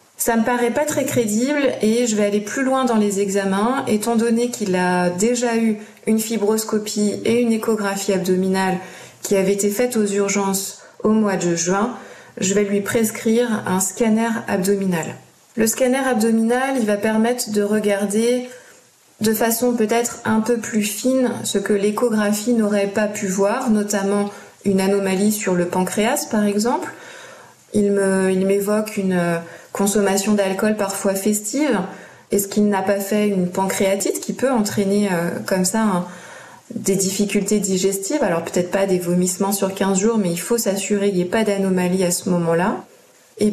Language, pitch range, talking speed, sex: French, 195-230 Hz, 165 wpm, female